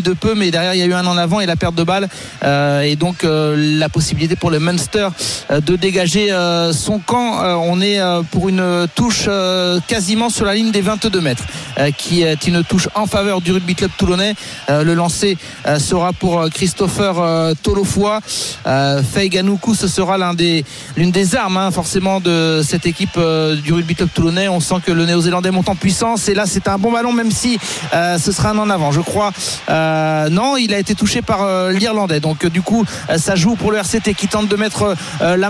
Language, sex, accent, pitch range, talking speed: French, male, French, 170-210 Hz, 230 wpm